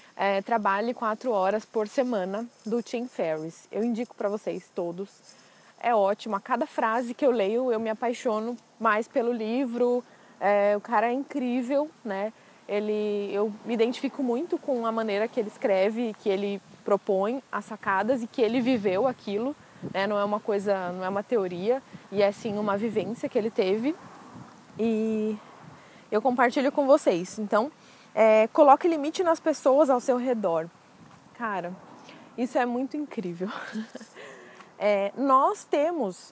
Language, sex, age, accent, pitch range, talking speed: Portuguese, female, 20-39, Brazilian, 200-245 Hz, 155 wpm